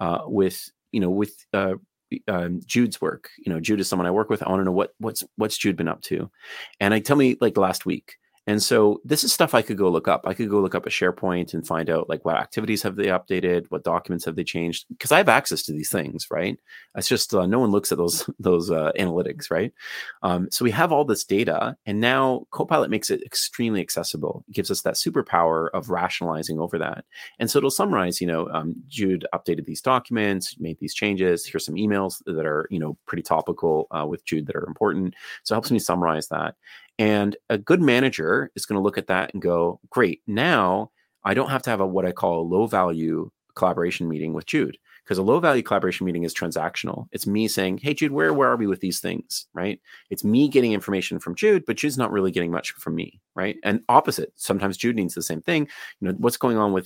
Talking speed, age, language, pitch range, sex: 235 wpm, 30-49, English, 85-110 Hz, male